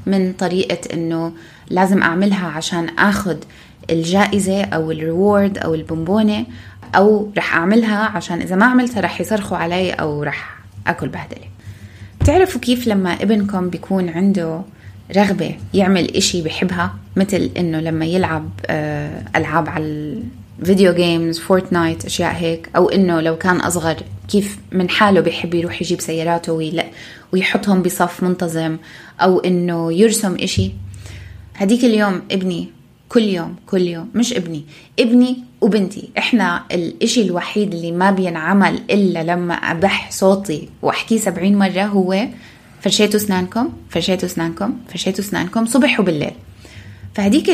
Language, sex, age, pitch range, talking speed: Arabic, female, 20-39, 165-200 Hz, 125 wpm